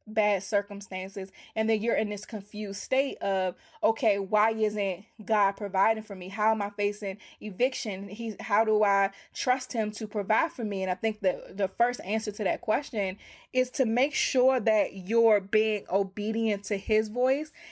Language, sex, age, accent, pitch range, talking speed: English, female, 20-39, American, 195-225 Hz, 180 wpm